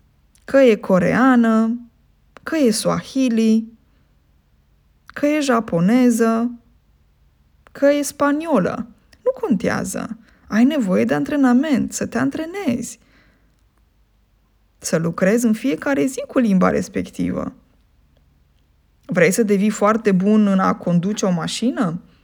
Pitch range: 175-250 Hz